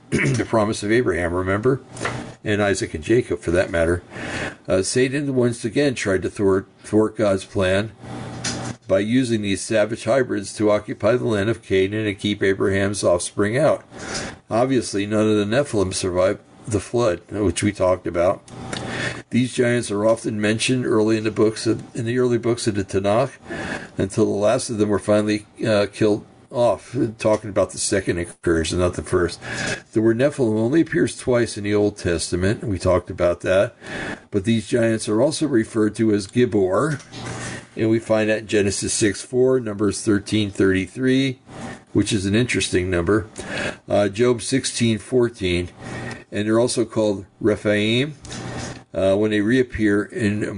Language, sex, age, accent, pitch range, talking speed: English, male, 60-79, American, 95-115 Hz, 160 wpm